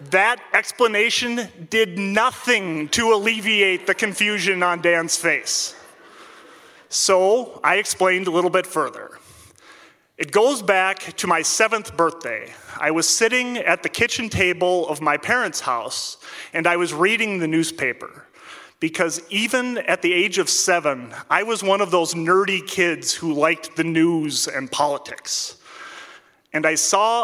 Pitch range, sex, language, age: 160-205 Hz, male, English, 30-49